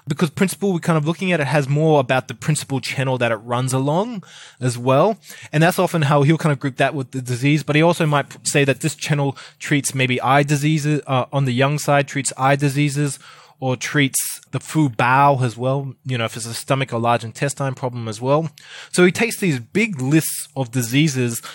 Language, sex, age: English, male, 20-39